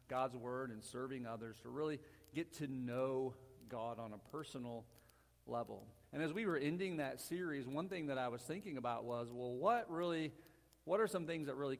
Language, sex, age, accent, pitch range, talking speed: English, male, 40-59, American, 115-145 Hz, 200 wpm